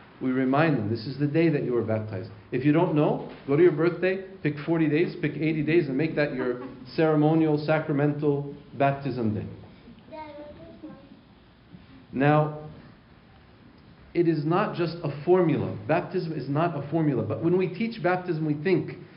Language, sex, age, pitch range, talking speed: English, male, 40-59, 135-165 Hz, 165 wpm